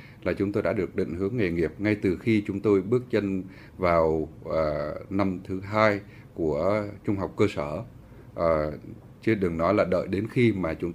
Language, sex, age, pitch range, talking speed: Vietnamese, male, 20-39, 90-115 Hz, 195 wpm